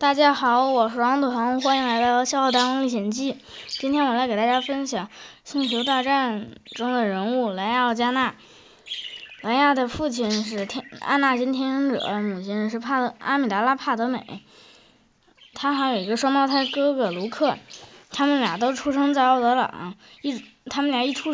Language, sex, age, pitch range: Chinese, female, 10-29, 225-275 Hz